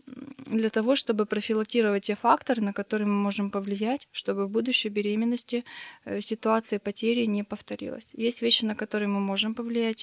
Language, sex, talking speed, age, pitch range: Russian, female, 155 wpm, 20-39, 205-235 Hz